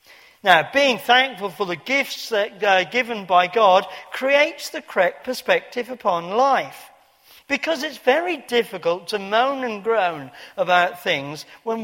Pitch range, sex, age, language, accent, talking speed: 175-260 Hz, male, 50-69, English, British, 140 wpm